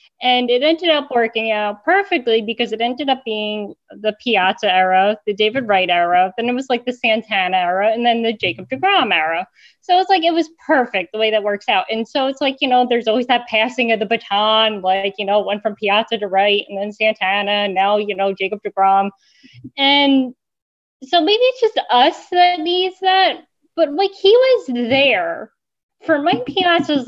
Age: 10-29